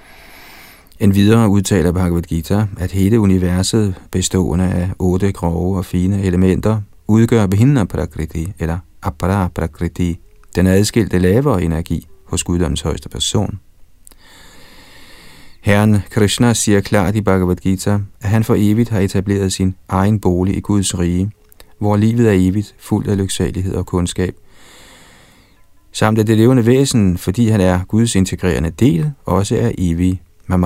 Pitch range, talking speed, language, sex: 90-105 Hz, 140 wpm, Danish, male